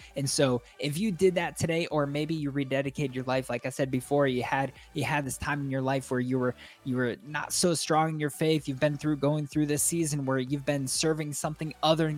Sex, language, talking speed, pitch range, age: male, English, 245 wpm, 125-155 Hz, 20-39